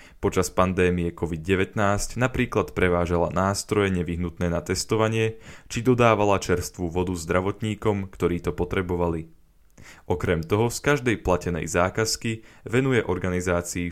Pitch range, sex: 85-110 Hz, male